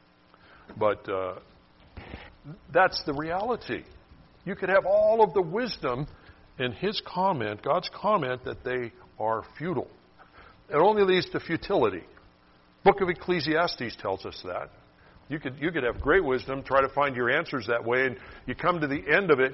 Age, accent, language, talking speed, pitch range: 60-79, American, English, 165 wpm, 110-175 Hz